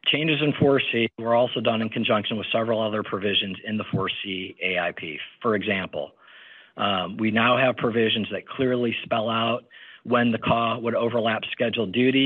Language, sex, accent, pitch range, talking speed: English, male, American, 110-125 Hz, 165 wpm